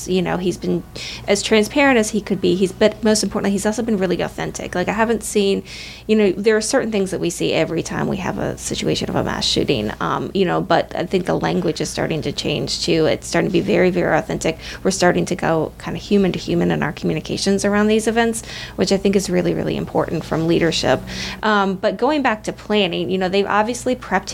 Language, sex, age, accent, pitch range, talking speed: English, female, 20-39, American, 180-210 Hz, 240 wpm